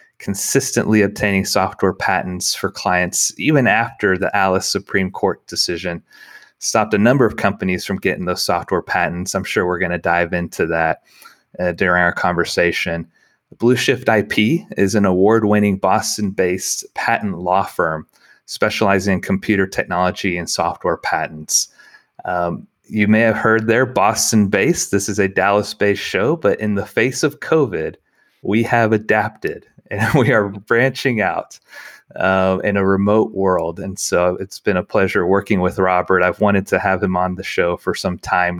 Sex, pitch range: male, 90-105 Hz